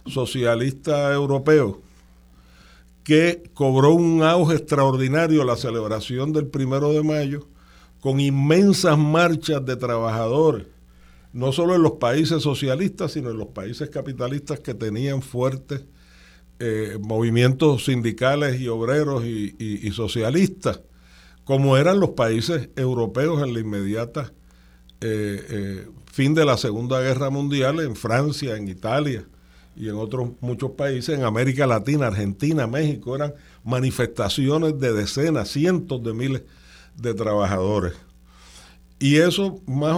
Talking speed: 125 wpm